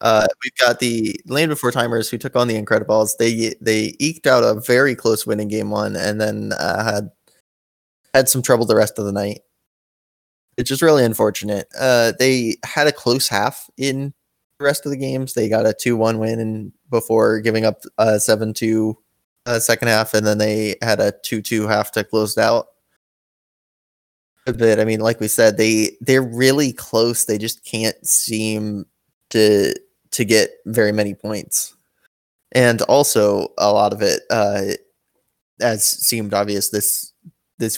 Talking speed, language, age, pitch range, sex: 170 wpm, English, 20-39, 105-125 Hz, male